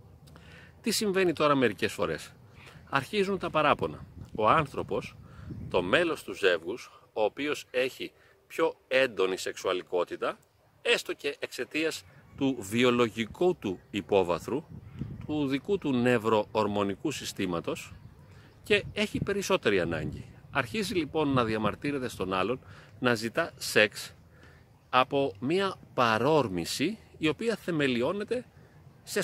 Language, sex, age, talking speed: Greek, male, 40-59, 105 wpm